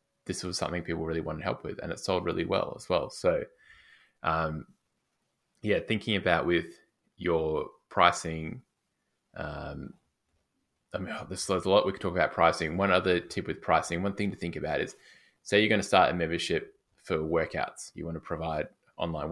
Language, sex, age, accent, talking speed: English, male, 20-39, Australian, 190 wpm